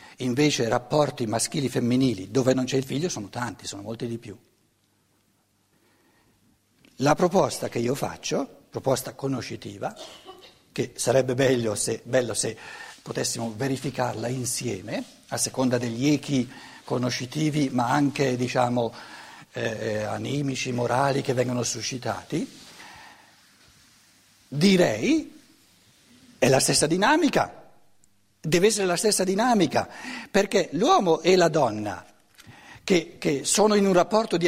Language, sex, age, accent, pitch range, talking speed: Italian, male, 60-79, native, 115-185 Hz, 115 wpm